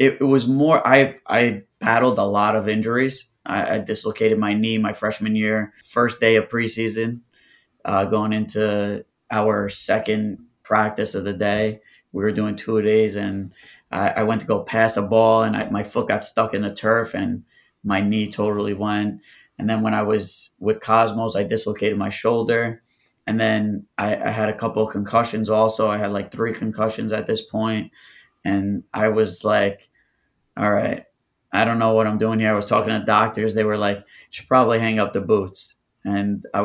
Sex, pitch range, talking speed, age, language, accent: male, 105-115 Hz, 195 wpm, 20-39, English, American